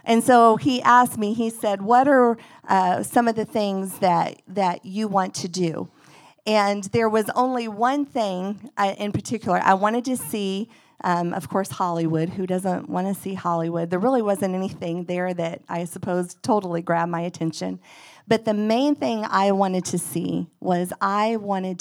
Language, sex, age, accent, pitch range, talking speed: English, female, 40-59, American, 170-215 Hz, 180 wpm